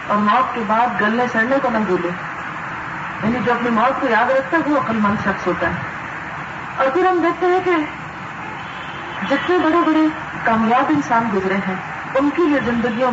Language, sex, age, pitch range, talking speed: Urdu, female, 40-59, 205-270 Hz, 185 wpm